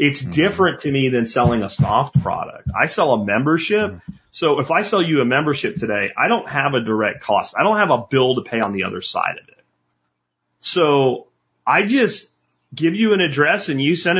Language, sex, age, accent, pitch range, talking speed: English, male, 30-49, American, 120-170 Hz, 210 wpm